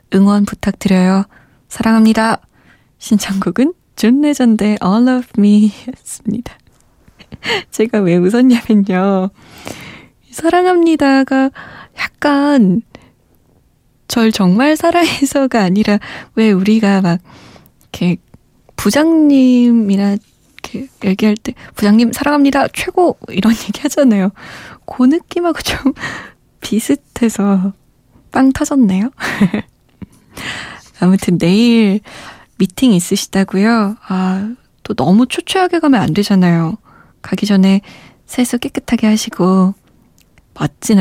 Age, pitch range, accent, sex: 20-39, 190-250 Hz, native, female